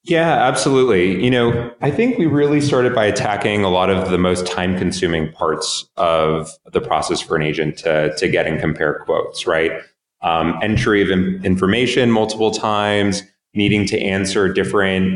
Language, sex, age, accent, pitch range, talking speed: English, male, 30-49, American, 90-115 Hz, 165 wpm